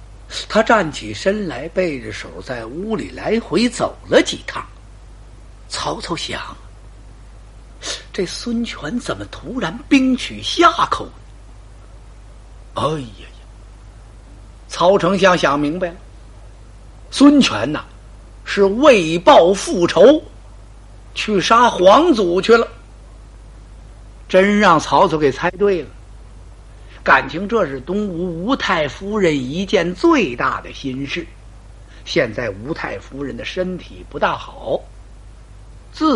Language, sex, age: Chinese, male, 50-69